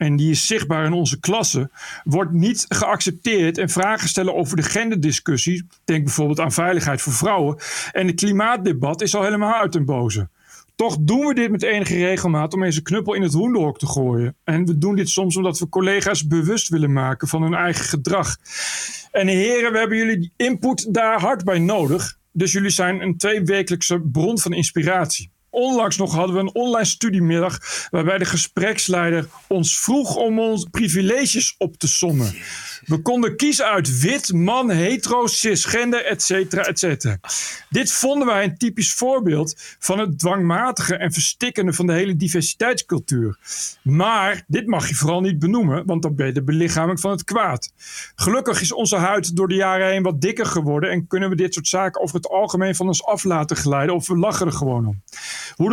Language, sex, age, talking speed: Dutch, male, 40-59, 185 wpm